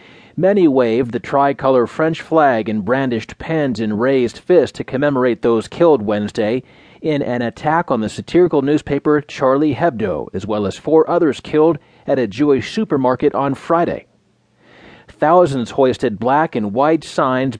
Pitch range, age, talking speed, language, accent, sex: 125-170 Hz, 30-49, 150 wpm, English, American, male